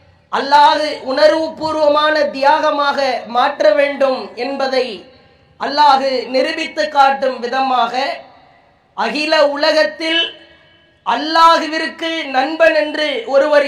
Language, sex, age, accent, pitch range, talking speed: English, female, 20-39, Indian, 290-330 Hz, 75 wpm